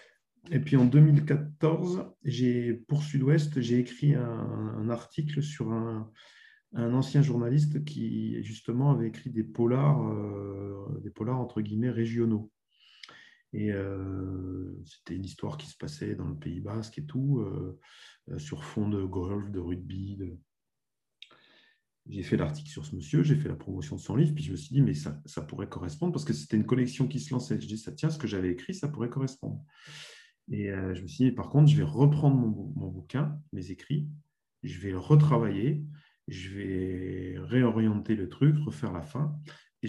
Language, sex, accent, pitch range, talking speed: French, male, French, 100-145 Hz, 185 wpm